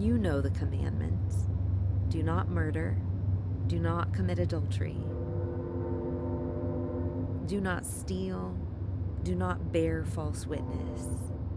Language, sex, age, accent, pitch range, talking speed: English, female, 30-49, American, 85-95 Hz, 100 wpm